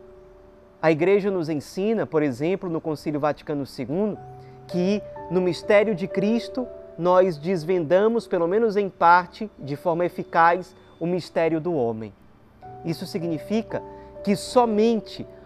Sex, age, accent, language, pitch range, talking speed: male, 20-39, Brazilian, Portuguese, 160-200 Hz, 125 wpm